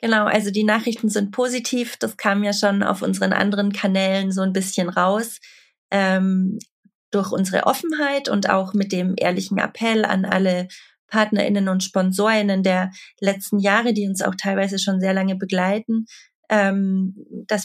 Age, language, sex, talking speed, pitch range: 30-49, German, female, 155 wpm, 190-220 Hz